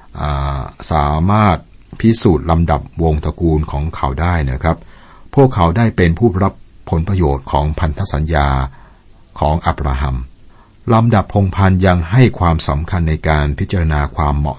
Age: 60-79